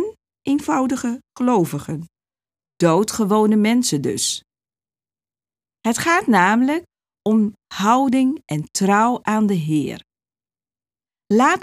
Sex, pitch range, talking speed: female, 155-255 Hz, 85 wpm